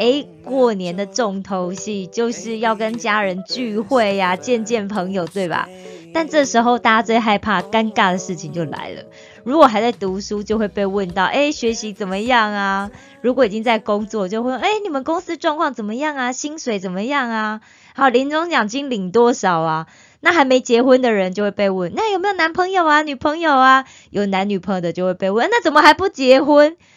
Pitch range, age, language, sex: 190-255 Hz, 20-39, Korean, female